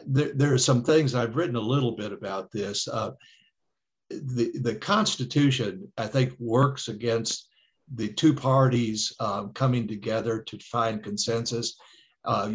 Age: 60-79